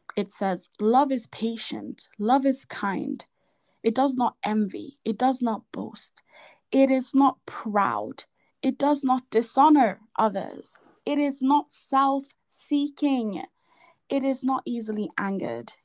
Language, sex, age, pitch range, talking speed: English, female, 20-39, 215-275 Hz, 130 wpm